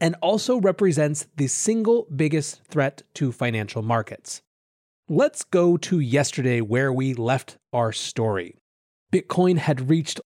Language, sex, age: English, male, 30-49